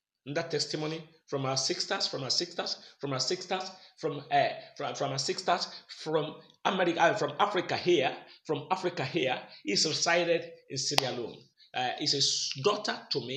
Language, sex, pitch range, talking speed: English, male, 145-190 Hz, 165 wpm